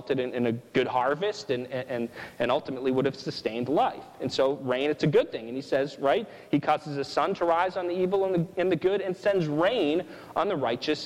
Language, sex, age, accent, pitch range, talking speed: English, male, 30-49, American, 140-180 Hz, 235 wpm